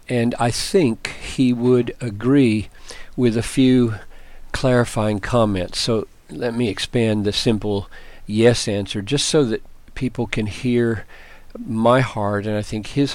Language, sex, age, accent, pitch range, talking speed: English, male, 50-69, American, 115-140 Hz, 140 wpm